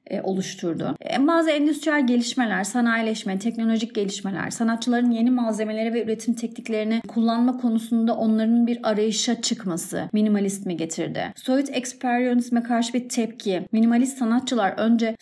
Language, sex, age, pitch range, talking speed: Turkish, female, 30-49, 215-245 Hz, 120 wpm